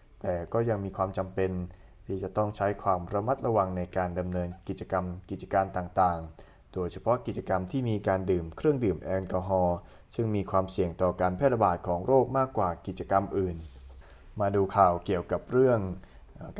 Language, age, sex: Thai, 20-39, male